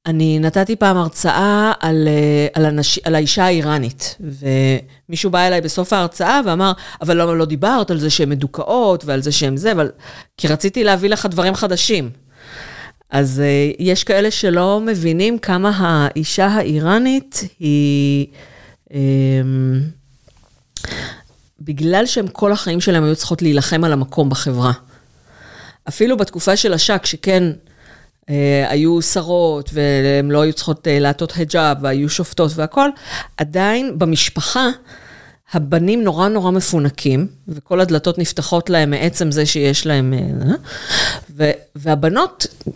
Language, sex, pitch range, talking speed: Hebrew, female, 145-190 Hz, 125 wpm